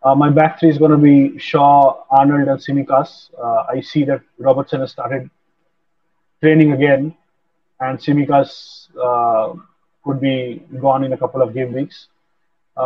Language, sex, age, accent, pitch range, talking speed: English, male, 30-49, Indian, 135-165 Hz, 160 wpm